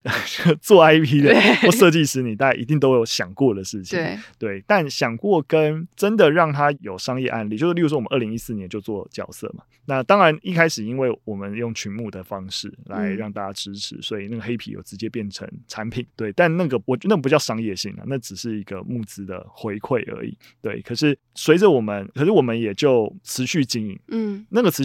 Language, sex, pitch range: Chinese, male, 105-145 Hz